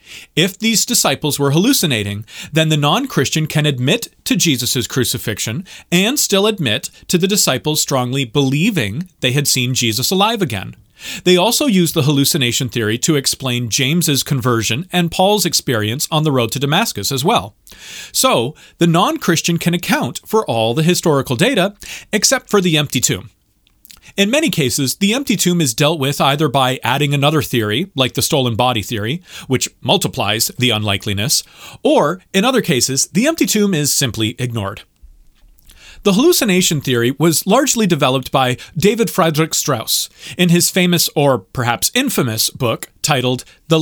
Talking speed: 155 wpm